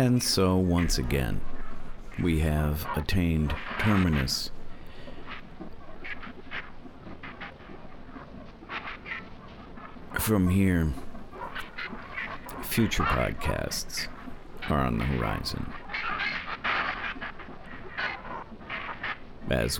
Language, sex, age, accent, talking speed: English, male, 50-69, American, 50 wpm